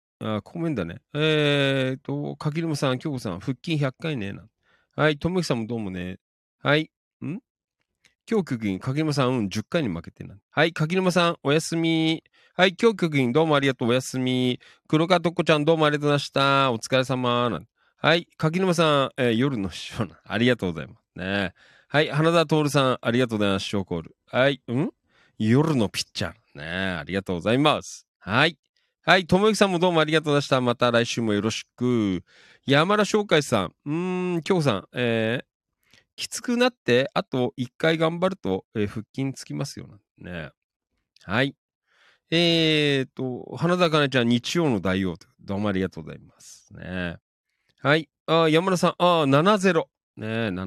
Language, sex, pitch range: Japanese, male, 115-160 Hz